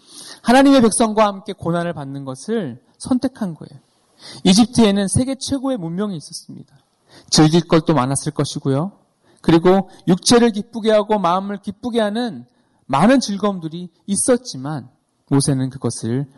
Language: Korean